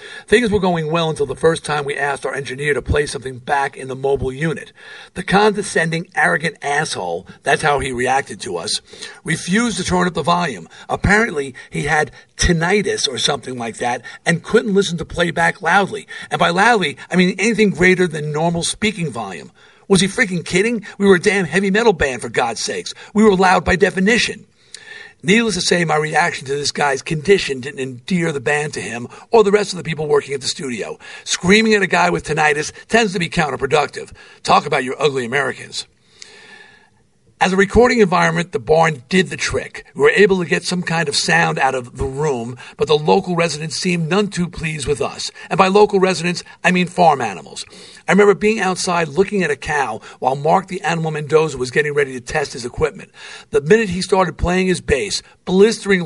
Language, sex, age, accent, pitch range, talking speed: English, male, 50-69, American, 160-210 Hz, 200 wpm